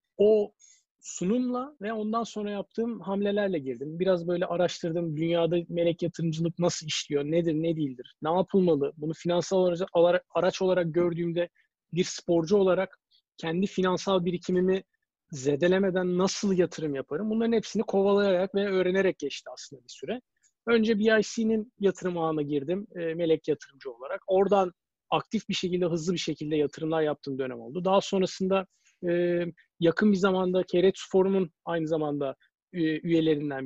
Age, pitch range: 40-59, 165-205 Hz